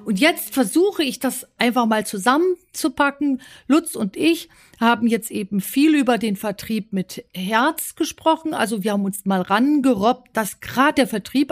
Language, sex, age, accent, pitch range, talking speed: German, female, 50-69, German, 200-275 Hz, 160 wpm